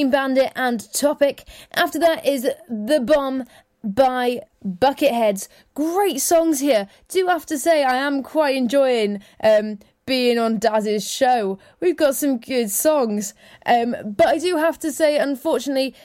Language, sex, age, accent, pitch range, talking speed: English, female, 20-39, British, 215-265 Hz, 145 wpm